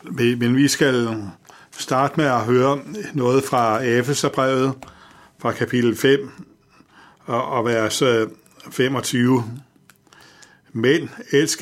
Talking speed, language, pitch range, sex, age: 95 wpm, Danish, 120-140 Hz, male, 60-79